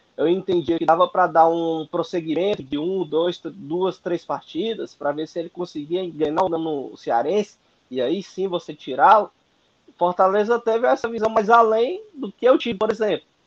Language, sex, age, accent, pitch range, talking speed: Portuguese, male, 20-39, Brazilian, 180-230 Hz, 175 wpm